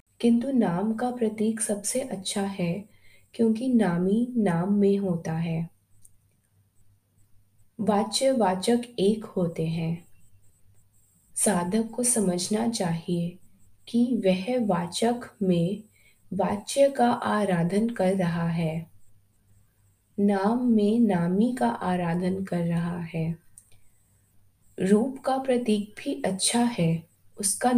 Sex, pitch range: female, 160-220 Hz